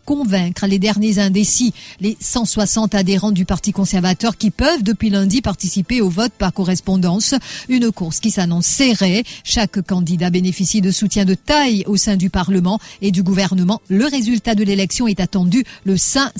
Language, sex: English, female